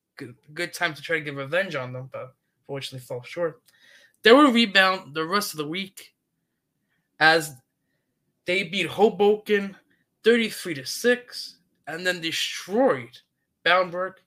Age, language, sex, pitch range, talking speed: 20-39, English, male, 155-200 Hz, 130 wpm